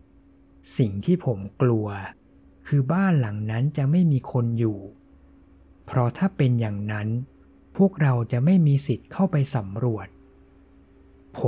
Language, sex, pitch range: Thai, male, 90-135 Hz